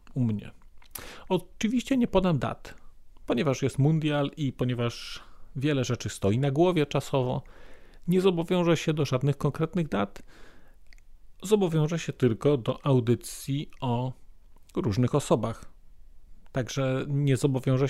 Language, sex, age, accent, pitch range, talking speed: Polish, male, 40-59, native, 115-155 Hz, 115 wpm